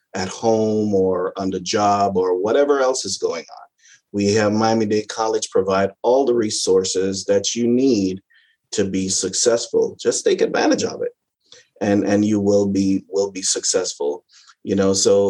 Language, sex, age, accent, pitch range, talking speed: English, male, 30-49, American, 100-125 Hz, 170 wpm